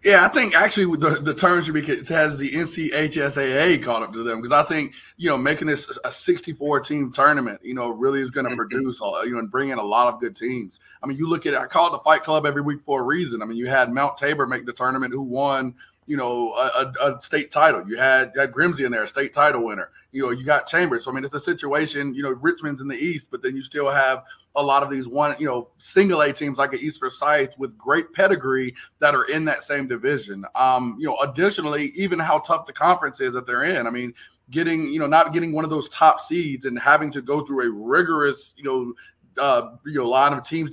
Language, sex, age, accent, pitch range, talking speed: English, male, 30-49, American, 130-155 Hz, 255 wpm